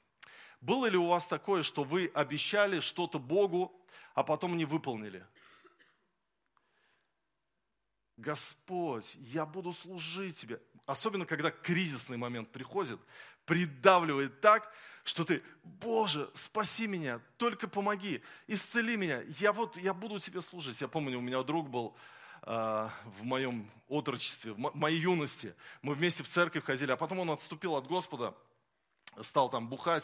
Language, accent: Russian, native